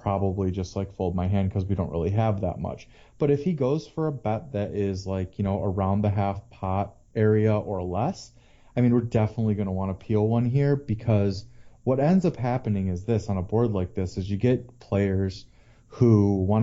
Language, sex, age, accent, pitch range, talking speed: English, male, 30-49, American, 100-120 Hz, 220 wpm